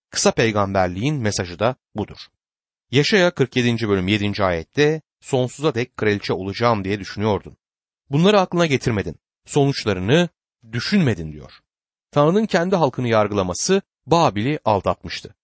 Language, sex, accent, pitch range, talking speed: Turkish, male, native, 100-150 Hz, 110 wpm